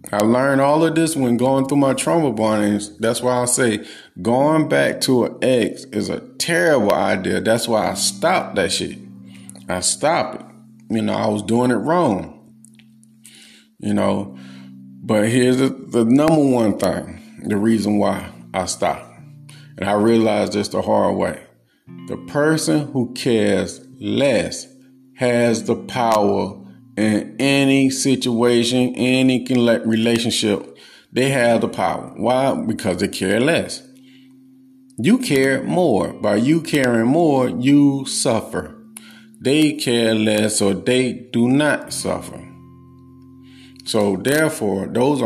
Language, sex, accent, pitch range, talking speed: English, male, American, 110-135 Hz, 140 wpm